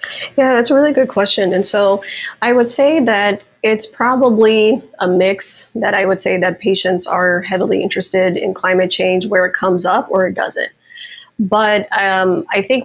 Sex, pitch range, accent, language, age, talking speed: female, 185-205 Hz, American, English, 20-39, 180 wpm